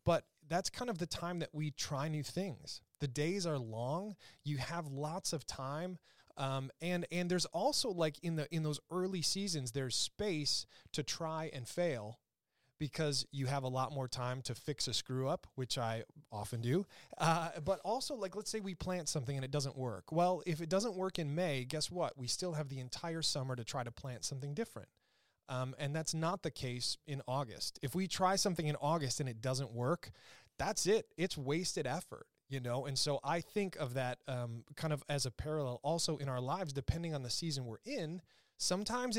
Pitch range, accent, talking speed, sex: 130-175 Hz, American, 210 wpm, male